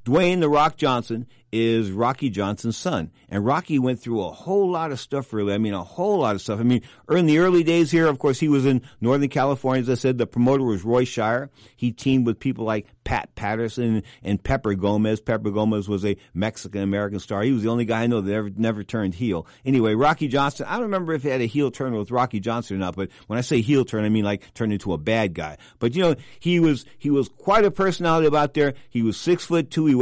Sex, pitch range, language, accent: male, 115-145 Hz, English, American